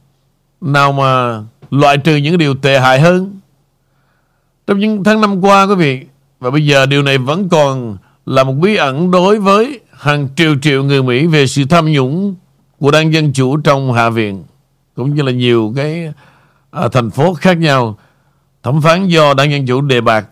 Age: 60-79